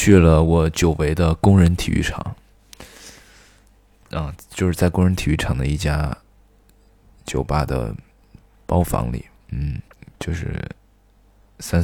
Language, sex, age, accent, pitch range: Chinese, male, 20-39, native, 85-105 Hz